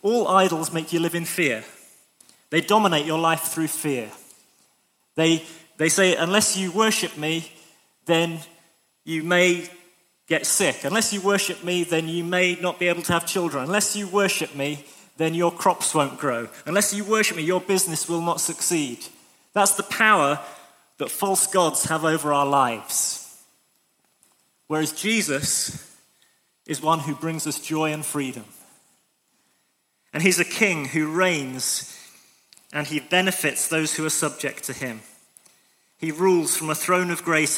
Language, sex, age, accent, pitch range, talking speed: English, male, 30-49, British, 155-185 Hz, 155 wpm